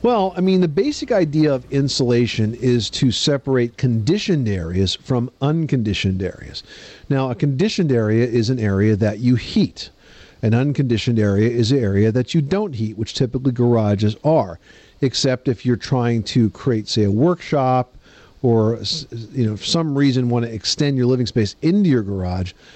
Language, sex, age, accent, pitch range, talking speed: English, male, 50-69, American, 110-140 Hz, 170 wpm